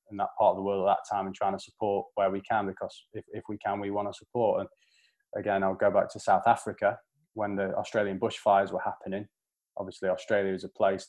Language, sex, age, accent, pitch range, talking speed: English, male, 20-39, British, 95-110 Hz, 240 wpm